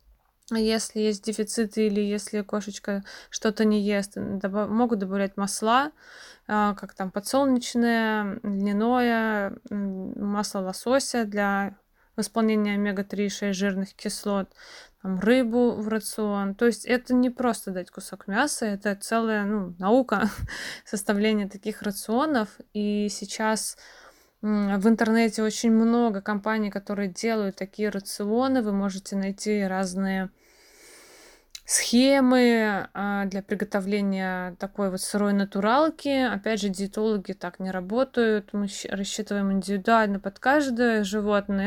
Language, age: Russian, 20-39